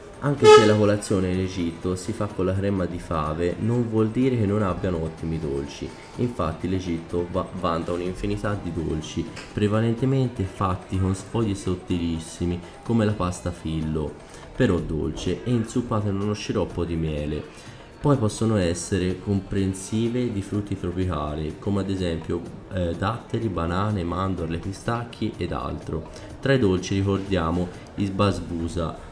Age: 20-39